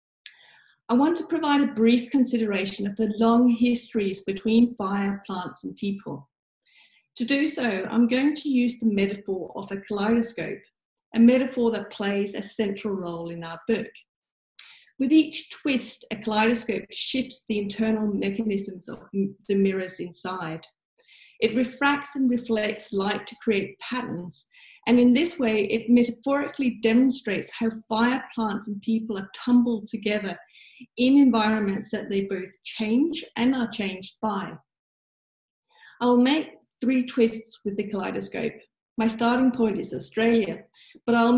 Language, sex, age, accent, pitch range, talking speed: English, female, 40-59, British, 200-245 Hz, 140 wpm